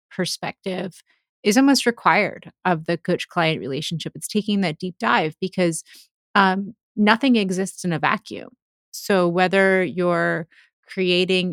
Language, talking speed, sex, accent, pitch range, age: English, 125 wpm, female, American, 170-205 Hz, 30-49